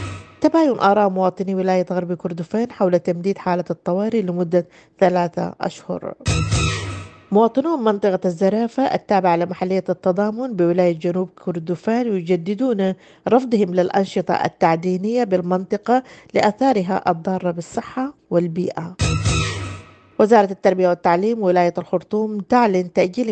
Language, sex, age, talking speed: English, female, 40-59, 100 wpm